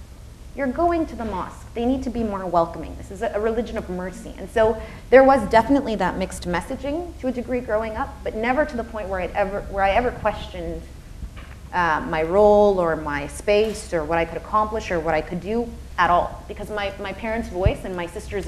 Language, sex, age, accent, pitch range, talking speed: English, female, 30-49, American, 165-225 Hz, 220 wpm